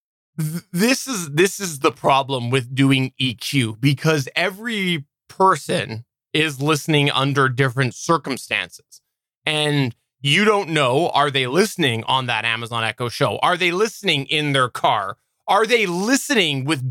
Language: English